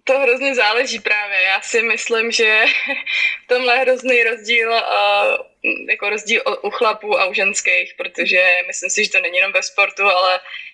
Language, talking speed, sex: Czech, 170 wpm, female